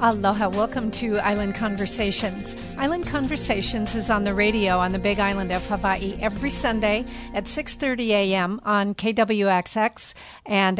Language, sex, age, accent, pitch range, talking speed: English, female, 50-69, American, 200-230 Hz, 140 wpm